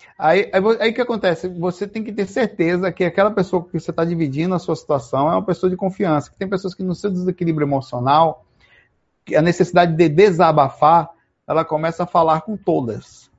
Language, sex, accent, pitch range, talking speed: Portuguese, male, Brazilian, 140-180 Hz, 190 wpm